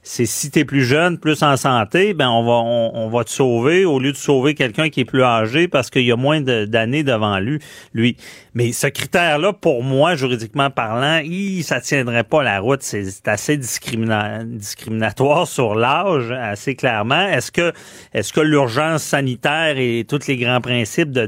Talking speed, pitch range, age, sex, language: 190 wpm, 115-150 Hz, 40-59, male, French